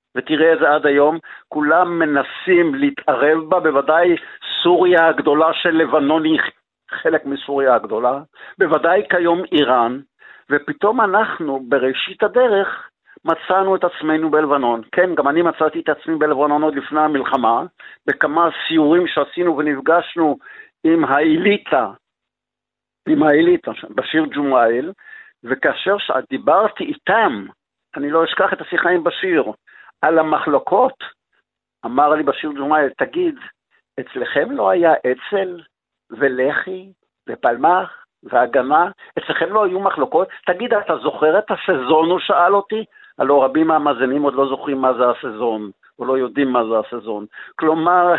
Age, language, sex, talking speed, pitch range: 60-79, Hebrew, male, 125 wpm, 145-180 Hz